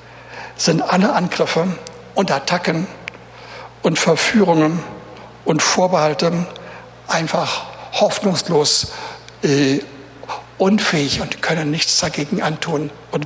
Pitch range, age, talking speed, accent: 160-230 Hz, 60-79, 85 wpm, German